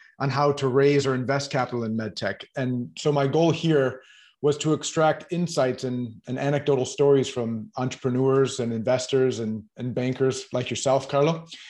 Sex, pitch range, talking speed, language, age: male, 130-155 Hz, 165 wpm, English, 30-49